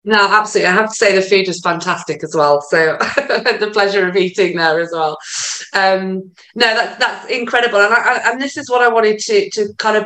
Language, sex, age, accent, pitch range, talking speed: English, female, 20-39, British, 170-205 Hz, 225 wpm